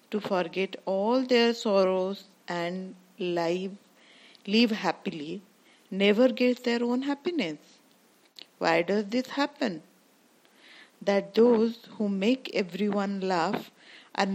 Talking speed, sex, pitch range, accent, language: 105 wpm, female, 190-250 Hz, native, Hindi